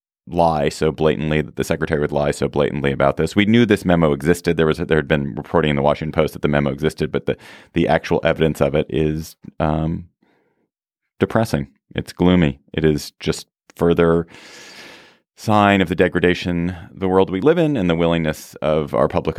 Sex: male